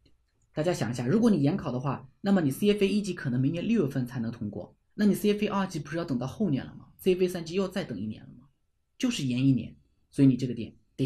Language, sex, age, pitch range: Chinese, male, 20-39, 125-190 Hz